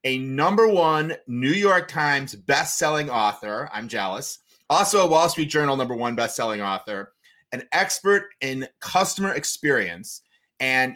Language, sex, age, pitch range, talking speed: English, male, 30-49, 125-170 Hz, 135 wpm